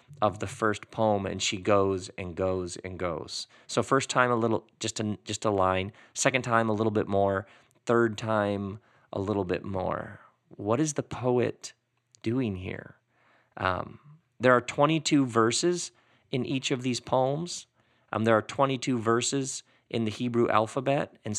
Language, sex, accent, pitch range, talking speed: English, male, American, 100-125 Hz, 165 wpm